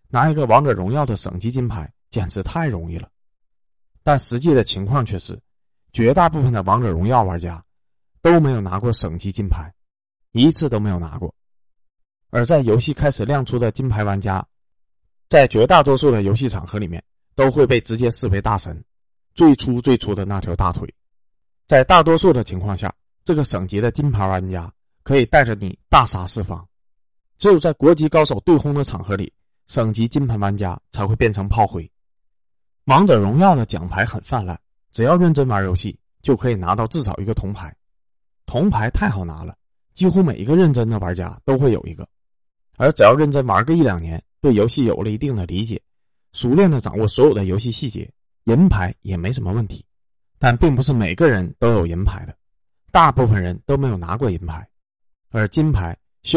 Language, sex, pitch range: Chinese, male, 95-130 Hz